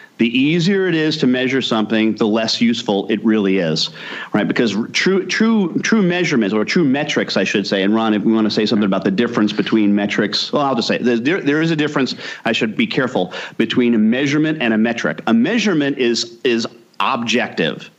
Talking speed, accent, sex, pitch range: 205 wpm, American, male, 110-150 Hz